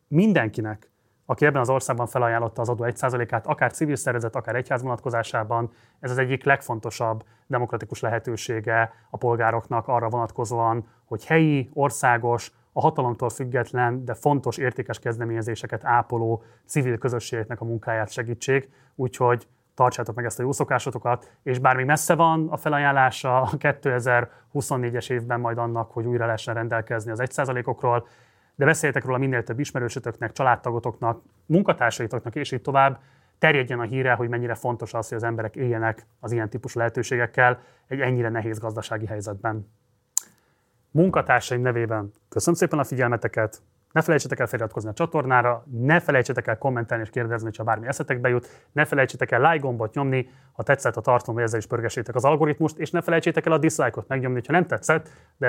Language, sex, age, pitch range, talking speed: Hungarian, male, 30-49, 115-135 Hz, 155 wpm